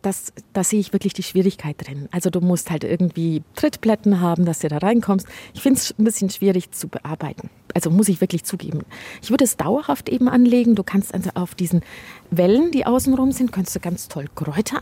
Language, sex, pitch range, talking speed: German, female, 180-230 Hz, 215 wpm